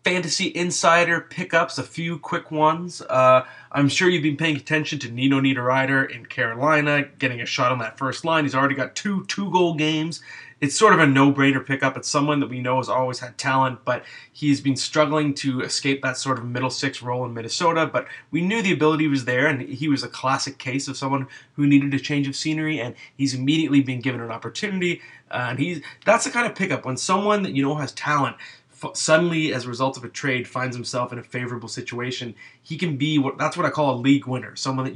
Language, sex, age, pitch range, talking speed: English, male, 20-39, 125-155 Hz, 225 wpm